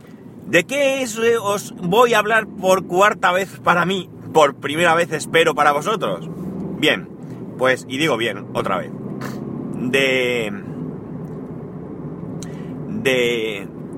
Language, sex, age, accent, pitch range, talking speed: Spanish, male, 40-59, Spanish, 135-180 Hz, 110 wpm